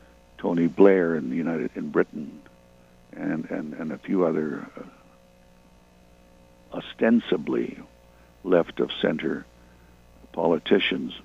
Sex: male